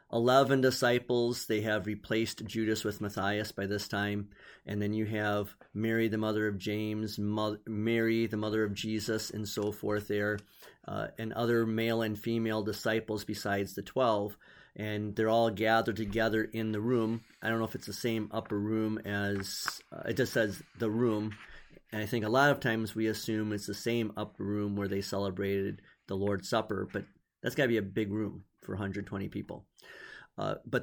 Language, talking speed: English, 185 wpm